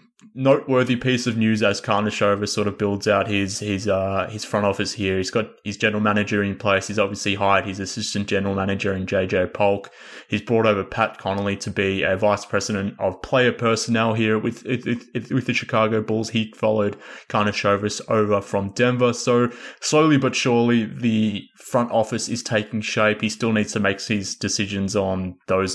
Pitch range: 100-115 Hz